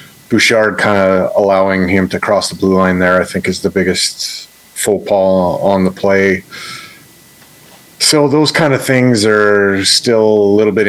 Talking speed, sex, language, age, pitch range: 170 wpm, male, English, 30-49, 95-105 Hz